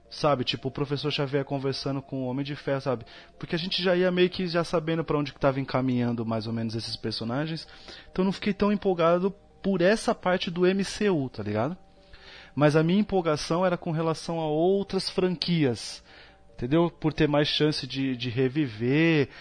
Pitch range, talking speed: 135-180 Hz, 190 wpm